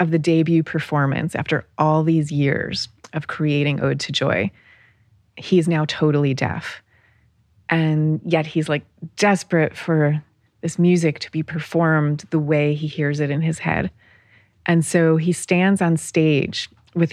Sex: female